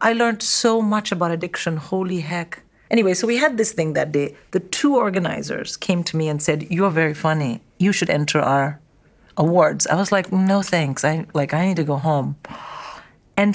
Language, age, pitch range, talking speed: English, 50-69, 170-210 Hz, 200 wpm